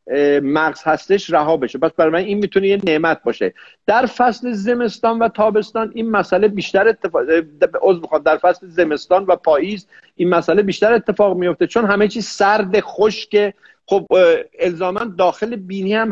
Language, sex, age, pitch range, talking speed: Persian, male, 50-69, 175-210 Hz, 160 wpm